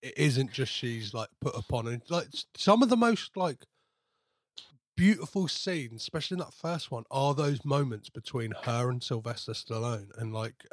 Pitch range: 120-150 Hz